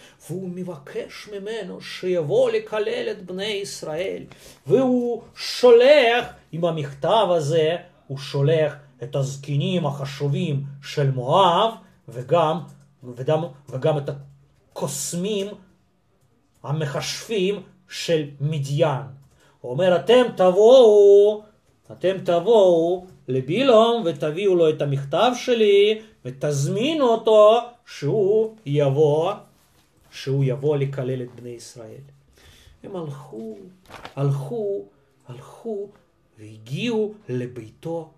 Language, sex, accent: Russian, male, native